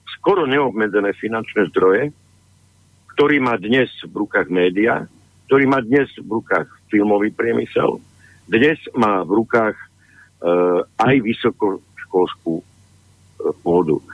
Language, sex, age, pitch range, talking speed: Slovak, male, 60-79, 95-120 Hz, 105 wpm